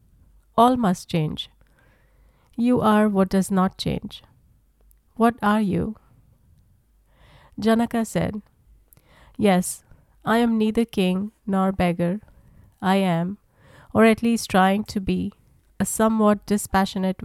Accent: Indian